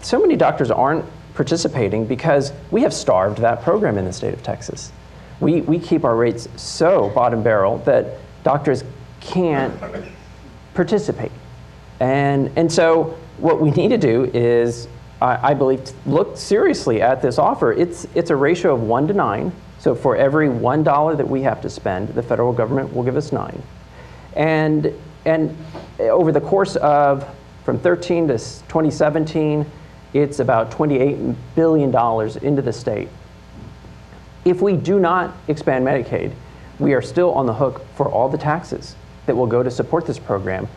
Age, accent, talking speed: 40-59, American, 160 wpm